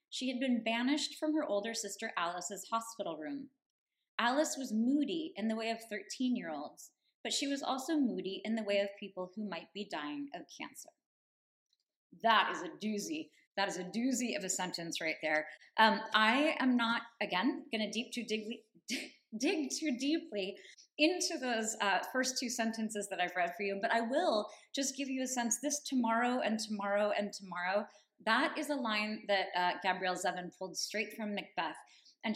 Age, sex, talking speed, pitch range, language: 20-39, female, 185 wpm, 205-270 Hz, English